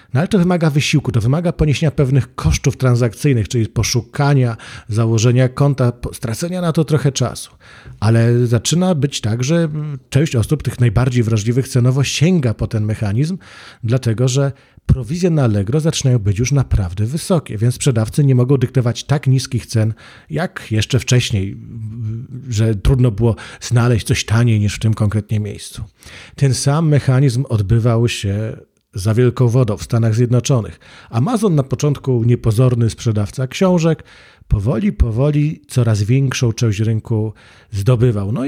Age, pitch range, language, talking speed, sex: 40-59, 110-140 Hz, Polish, 145 wpm, male